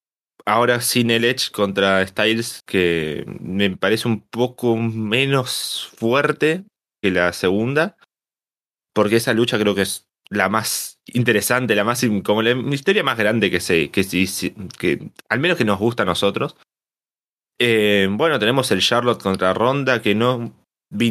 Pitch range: 95-125 Hz